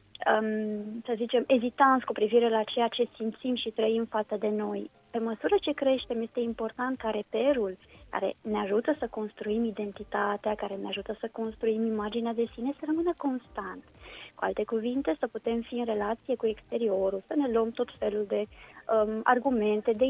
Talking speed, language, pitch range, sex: 175 wpm, Romanian, 210-250 Hz, female